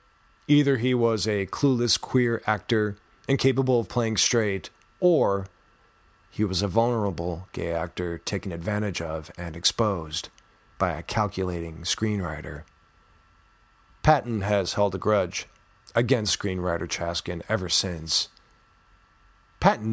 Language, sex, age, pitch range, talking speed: English, male, 40-59, 85-115 Hz, 115 wpm